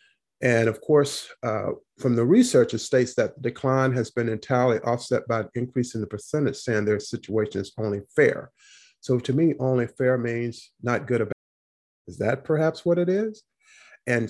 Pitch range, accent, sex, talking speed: 110-130 Hz, American, male, 180 wpm